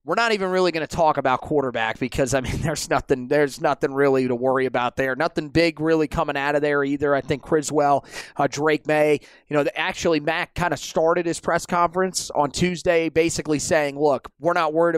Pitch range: 150-175 Hz